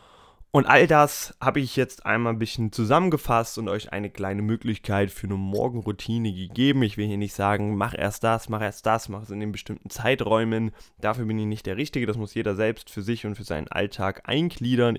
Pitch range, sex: 105-130 Hz, male